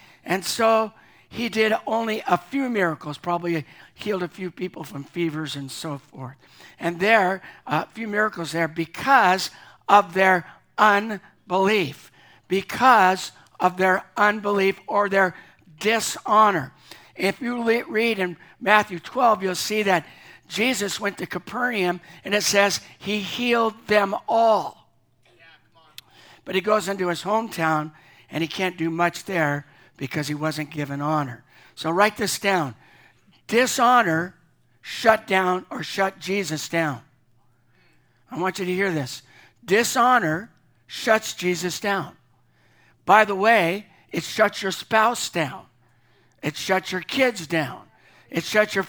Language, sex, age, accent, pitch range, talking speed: English, male, 60-79, American, 160-215 Hz, 135 wpm